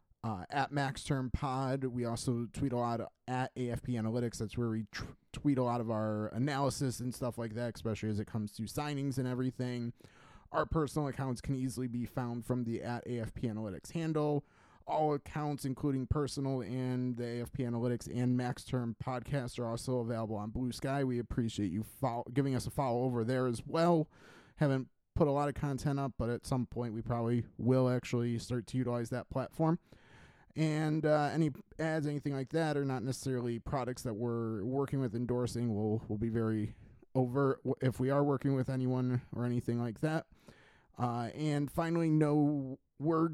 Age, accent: 30-49, American